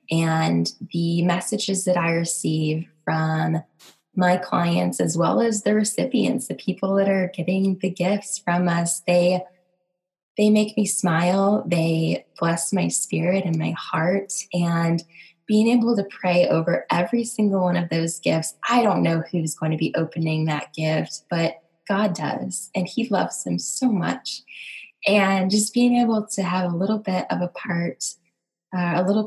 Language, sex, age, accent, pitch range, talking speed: English, female, 10-29, American, 165-195 Hz, 165 wpm